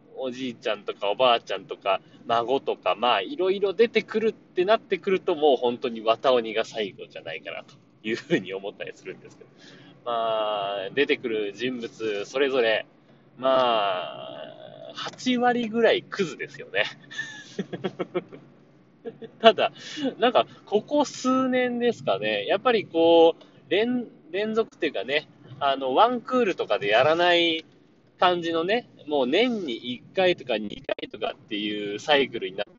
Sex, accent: male, native